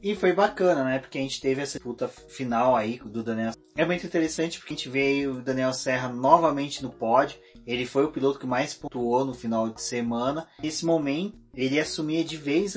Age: 20-39